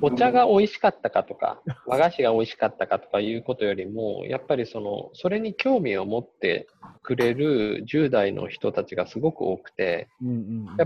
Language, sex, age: Japanese, male, 20-39